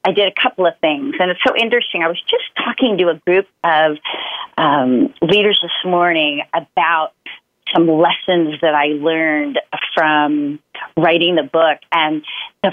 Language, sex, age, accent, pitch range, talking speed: English, female, 40-59, American, 155-200 Hz, 160 wpm